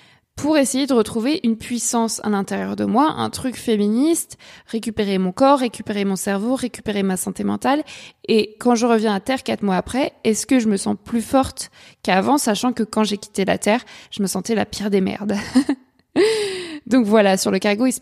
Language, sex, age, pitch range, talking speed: French, female, 20-39, 195-230 Hz, 205 wpm